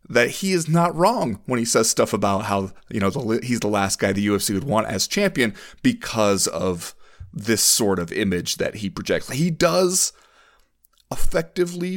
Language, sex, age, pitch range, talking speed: English, male, 30-49, 95-150 Hz, 180 wpm